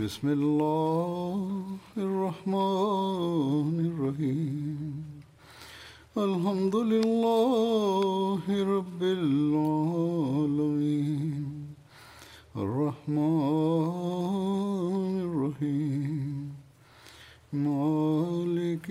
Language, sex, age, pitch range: Tamil, male, 60-79, 145-185 Hz